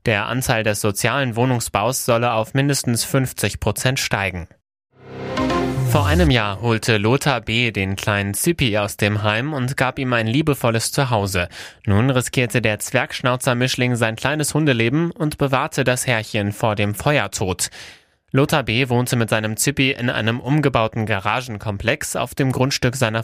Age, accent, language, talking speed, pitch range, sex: 20-39, German, German, 145 wpm, 110-135 Hz, male